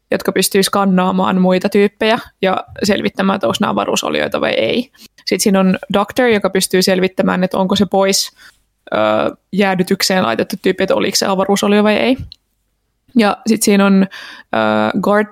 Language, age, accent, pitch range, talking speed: Finnish, 20-39, native, 190-215 Hz, 150 wpm